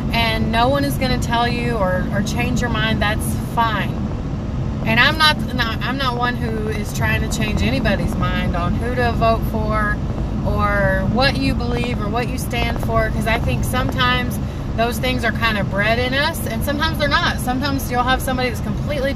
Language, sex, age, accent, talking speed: English, female, 30-49, American, 200 wpm